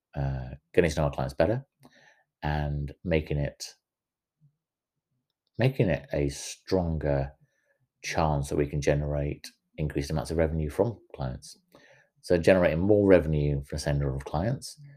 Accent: British